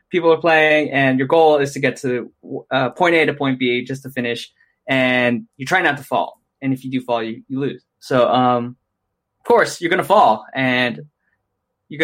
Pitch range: 125-155 Hz